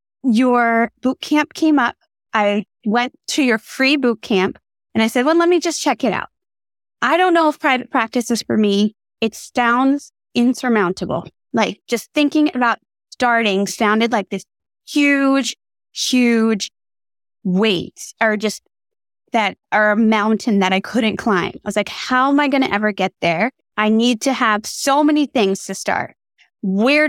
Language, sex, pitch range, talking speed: English, female, 210-295 Hz, 165 wpm